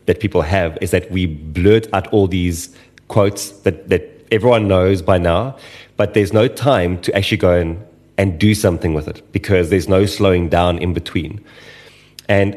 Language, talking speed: English, 180 wpm